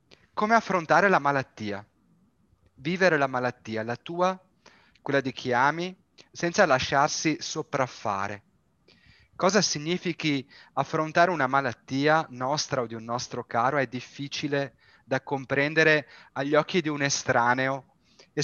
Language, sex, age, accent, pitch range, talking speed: Italian, male, 30-49, native, 125-160 Hz, 120 wpm